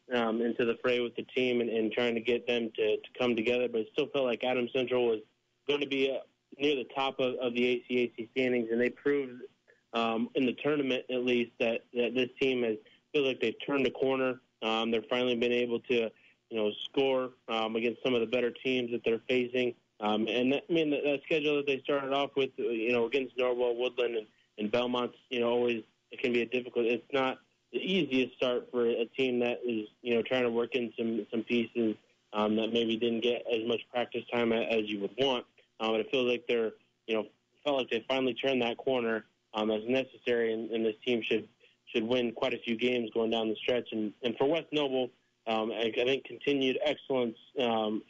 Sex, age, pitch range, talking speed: male, 20-39, 115-130 Hz, 225 wpm